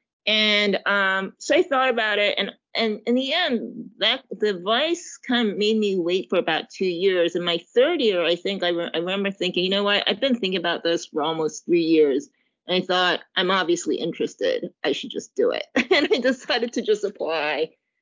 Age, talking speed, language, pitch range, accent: 30-49, 210 wpm, English, 170-240 Hz, American